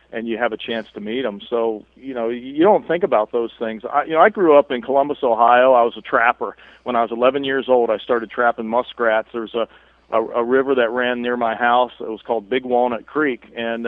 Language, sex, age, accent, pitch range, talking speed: English, male, 40-59, American, 115-130 Hz, 250 wpm